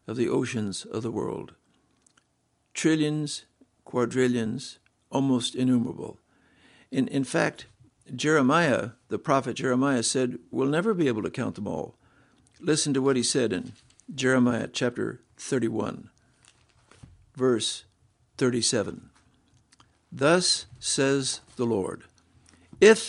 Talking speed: 110 wpm